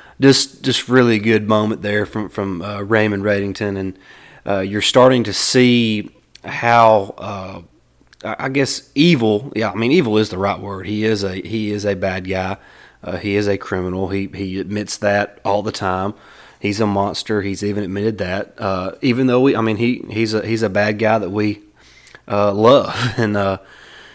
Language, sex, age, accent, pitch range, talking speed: English, male, 30-49, American, 100-115 Hz, 190 wpm